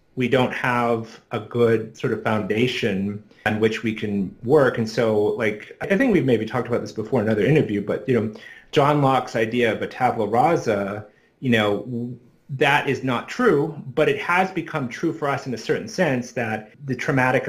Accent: American